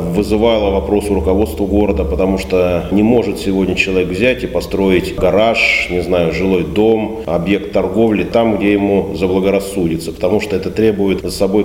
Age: 30-49